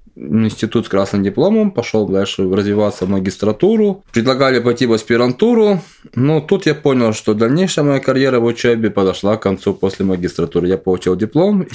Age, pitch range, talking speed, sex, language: 20-39, 100-135 Hz, 165 wpm, male, Russian